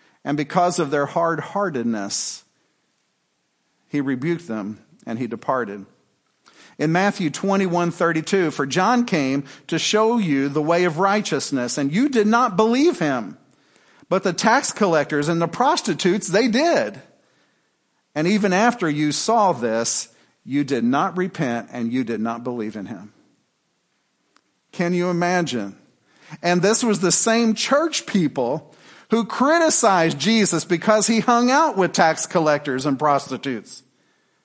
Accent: American